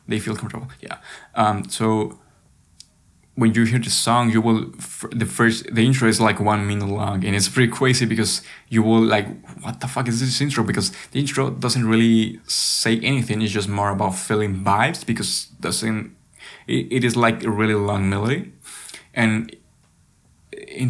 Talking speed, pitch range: 180 wpm, 100-115 Hz